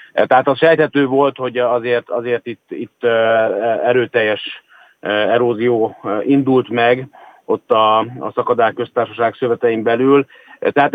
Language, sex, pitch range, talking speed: Hungarian, male, 110-135 Hz, 115 wpm